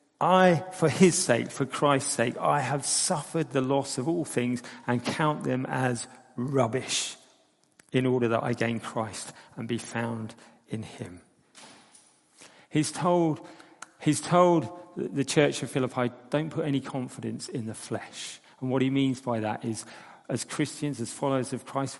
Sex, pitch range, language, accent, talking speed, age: male, 120-145 Hz, English, British, 160 wpm, 40-59